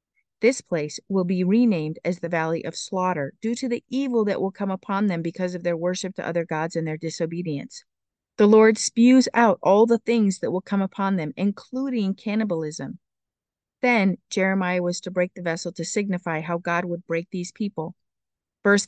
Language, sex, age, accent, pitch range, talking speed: English, female, 40-59, American, 175-220 Hz, 190 wpm